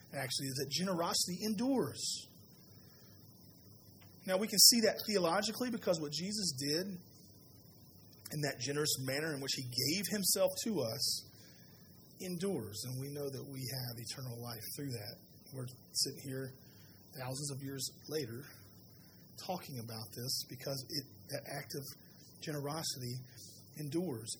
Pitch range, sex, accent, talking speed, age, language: 125-155 Hz, male, American, 135 wpm, 30-49, English